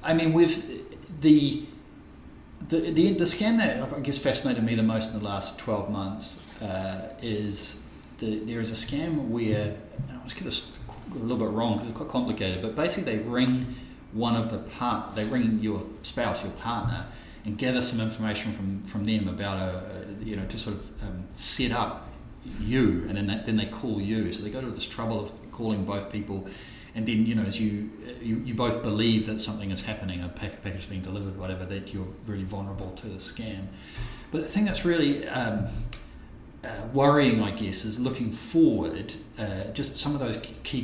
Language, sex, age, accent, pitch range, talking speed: English, male, 30-49, Australian, 100-120 Hz, 200 wpm